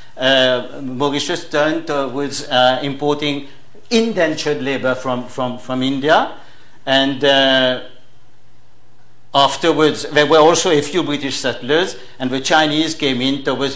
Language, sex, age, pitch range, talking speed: English, male, 60-79, 130-155 Hz, 120 wpm